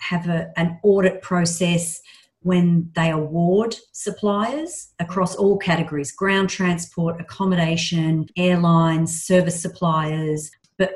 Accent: Australian